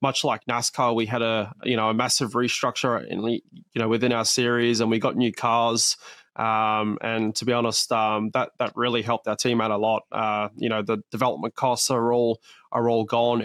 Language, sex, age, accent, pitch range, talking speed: English, male, 20-39, Australian, 110-120 Hz, 215 wpm